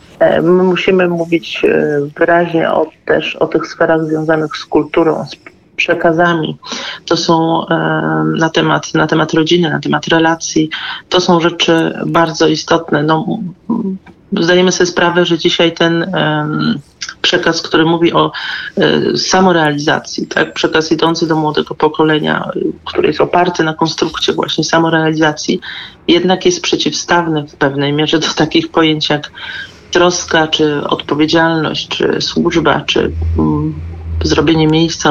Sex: male